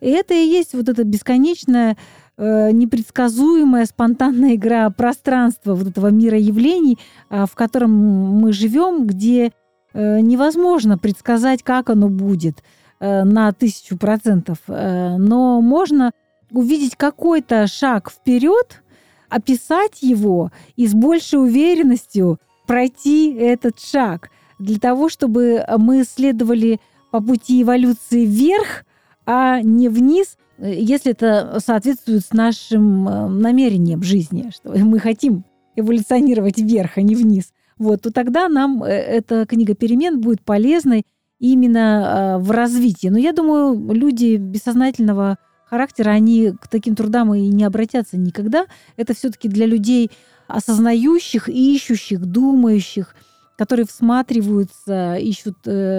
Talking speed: 115 wpm